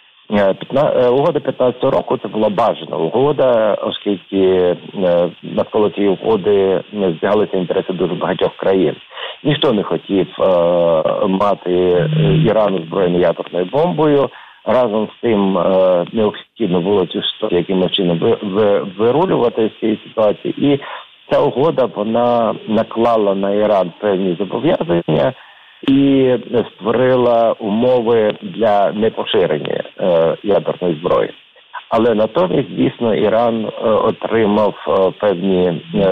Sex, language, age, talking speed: male, Ukrainian, 50-69, 110 wpm